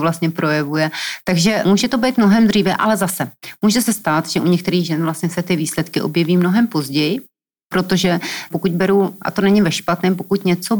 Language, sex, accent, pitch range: Czech, female, native, 165-195 Hz